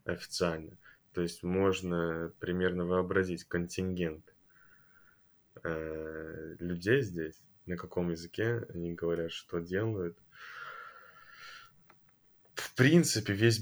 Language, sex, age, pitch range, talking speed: Russian, male, 20-39, 85-95 Hz, 95 wpm